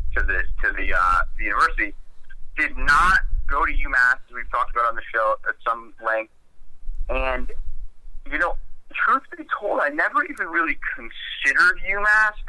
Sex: male